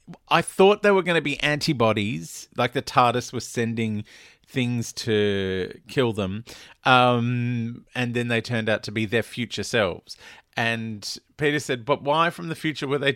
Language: English